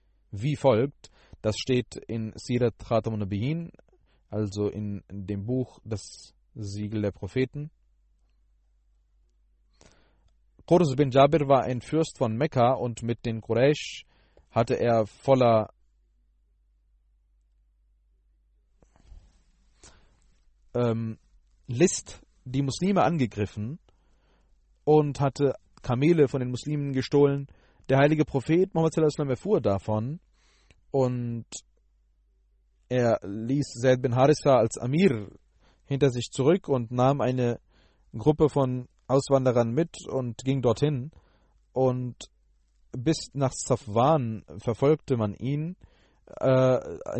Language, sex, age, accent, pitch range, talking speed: German, male, 30-49, German, 95-135 Hz, 100 wpm